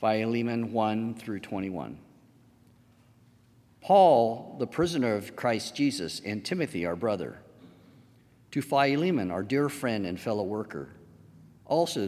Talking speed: 115 wpm